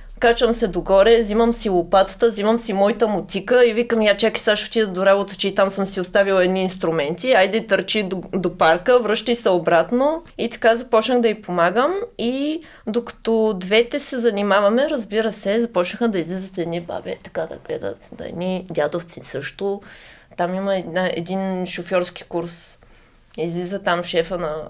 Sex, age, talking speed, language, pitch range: female, 20-39, 165 wpm, Bulgarian, 185-245 Hz